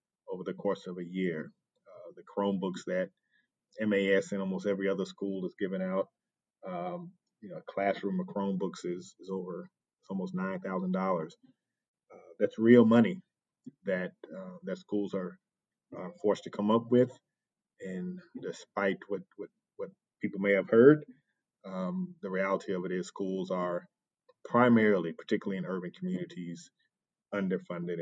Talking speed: 150 wpm